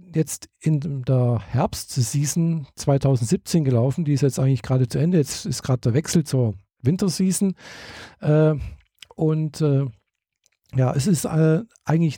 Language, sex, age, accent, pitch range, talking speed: German, male, 50-69, German, 130-160 Hz, 125 wpm